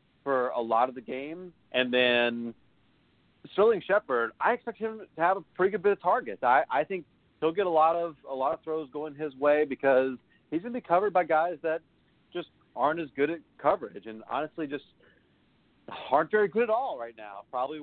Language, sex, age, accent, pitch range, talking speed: English, male, 40-59, American, 125-165 Hz, 205 wpm